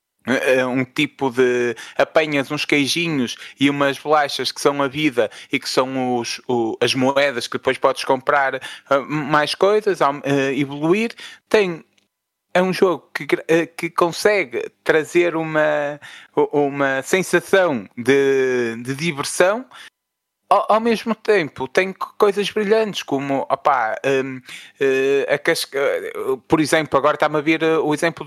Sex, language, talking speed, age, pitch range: male, Portuguese, 135 wpm, 20-39, 145-205 Hz